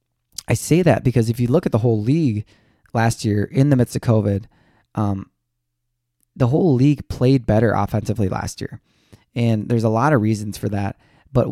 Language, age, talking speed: English, 20-39, 190 wpm